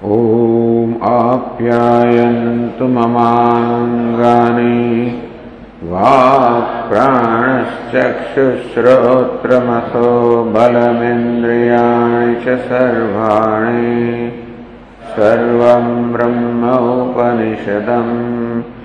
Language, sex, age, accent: English, male, 50-69, Indian